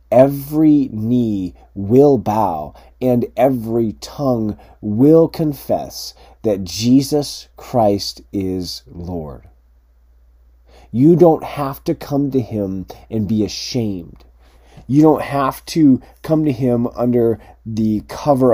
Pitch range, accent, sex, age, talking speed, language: 95-130 Hz, American, male, 30-49, 110 wpm, English